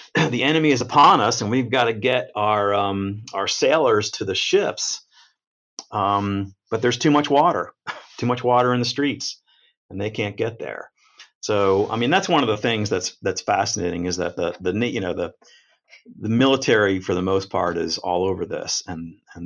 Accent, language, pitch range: American, English, 90-115 Hz